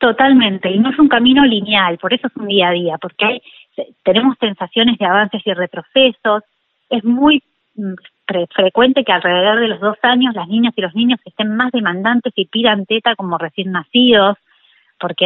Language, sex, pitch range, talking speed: Spanish, female, 190-240 Hz, 185 wpm